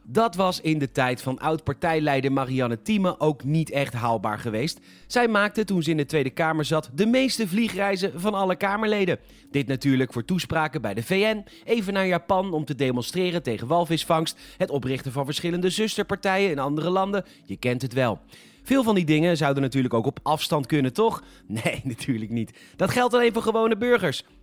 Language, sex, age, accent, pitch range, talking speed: Dutch, male, 40-59, Dutch, 135-190 Hz, 185 wpm